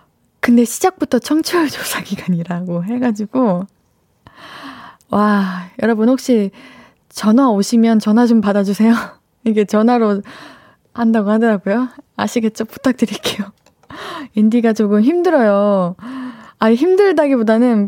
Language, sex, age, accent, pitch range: Korean, female, 20-39, native, 215-280 Hz